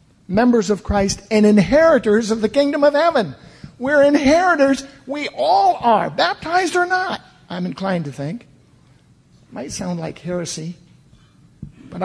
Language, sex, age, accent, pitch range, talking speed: English, male, 50-69, American, 205-285 Hz, 140 wpm